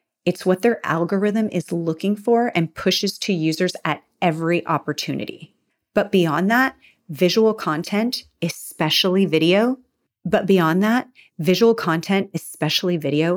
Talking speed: 125 wpm